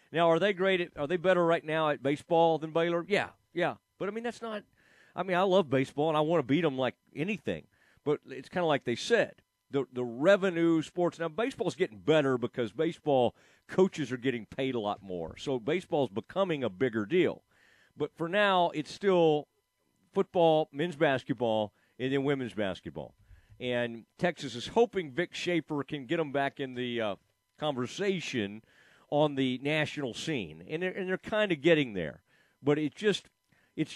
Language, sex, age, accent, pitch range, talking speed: English, male, 40-59, American, 135-180 Hz, 195 wpm